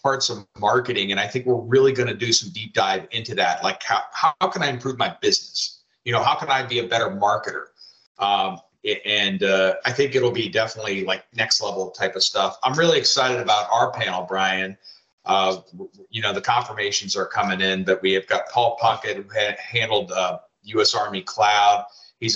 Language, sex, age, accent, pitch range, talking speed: English, male, 40-59, American, 95-125 Hz, 205 wpm